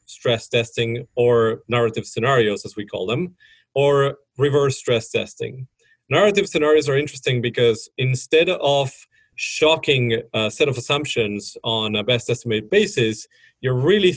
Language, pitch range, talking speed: English, 120-145 Hz, 135 wpm